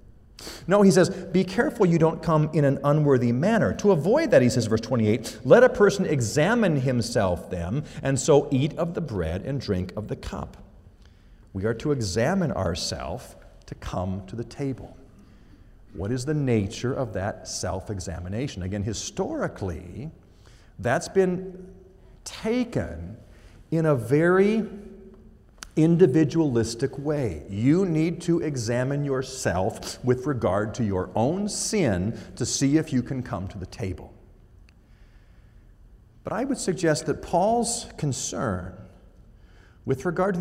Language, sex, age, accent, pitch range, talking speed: English, male, 50-69, American, 105-160 Hz, 140 wpm